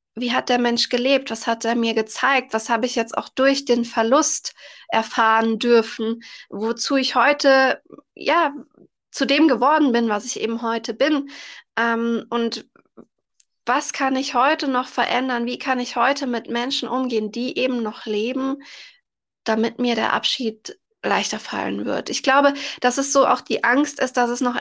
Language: German